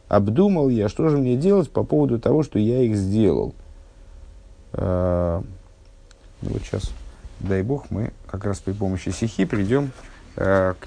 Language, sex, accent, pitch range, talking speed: Russian, male, native, 90-125 Hz, 140 wpm